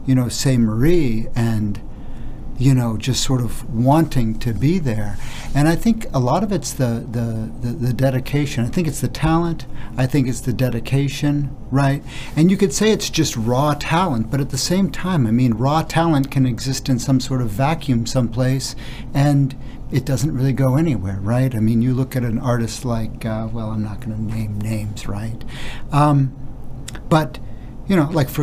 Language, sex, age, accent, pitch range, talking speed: Czech, male, 50-69, American, 120-150 Hz, 195 wpm